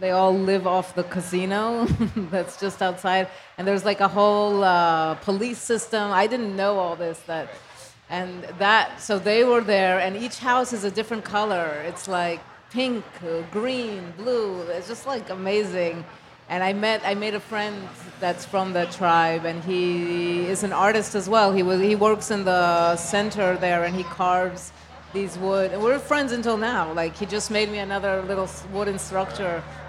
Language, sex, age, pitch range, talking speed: English, female, 30-49, 175-210 Hz, 180 wpm